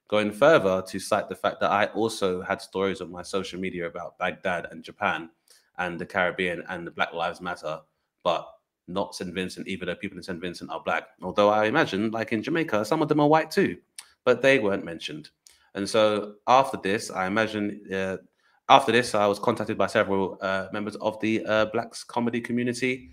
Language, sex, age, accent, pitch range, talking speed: English, male, 20-39, British, 95-115 Hz, 200 wpm